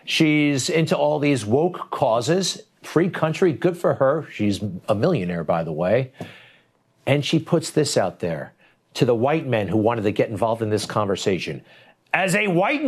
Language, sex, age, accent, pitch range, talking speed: English, male, 50-69, American, 120-165 Hz, 175 wpm